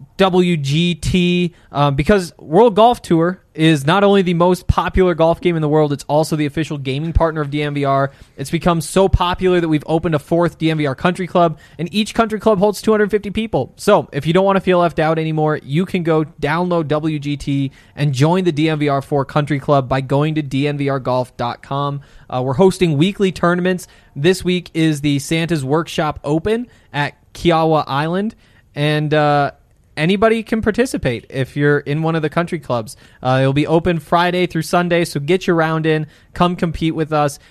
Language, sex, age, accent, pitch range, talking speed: English, male, 20-39, American, 145-180 Hz, 180 wpm